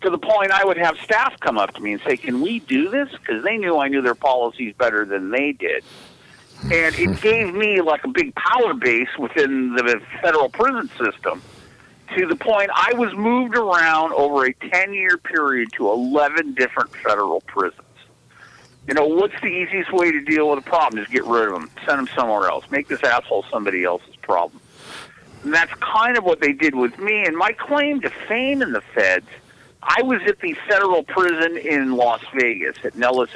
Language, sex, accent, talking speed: English, male, American, 200 wpm